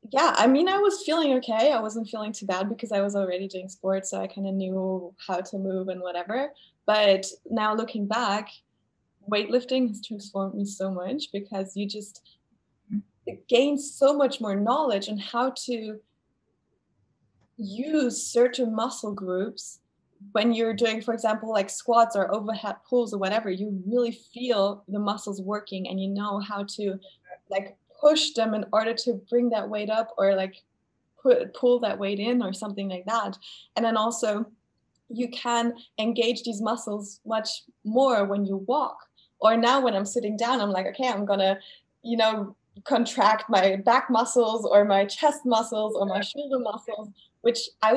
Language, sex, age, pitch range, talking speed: English, female, 20-39, 200-240 Hz, 170 wpm